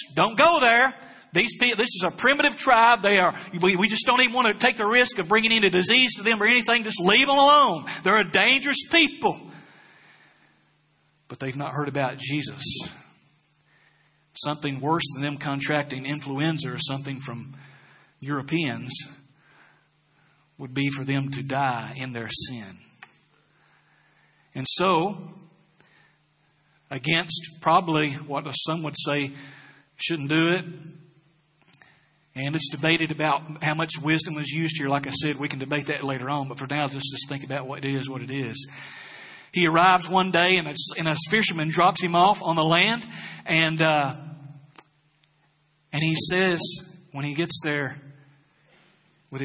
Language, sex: English, male